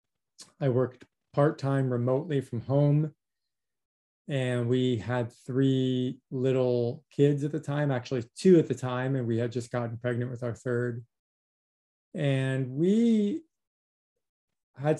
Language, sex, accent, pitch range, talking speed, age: English, male, American, 120-145 Hz, 130 wpm, 20-39